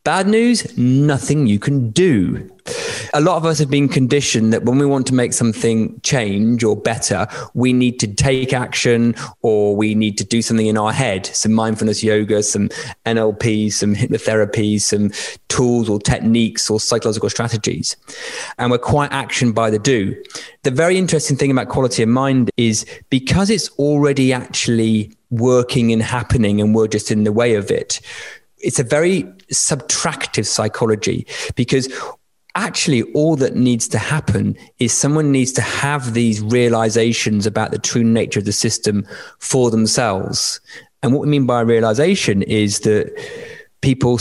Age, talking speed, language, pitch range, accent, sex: 20-39, 165 wpm, English, 110-140 Hz, British, male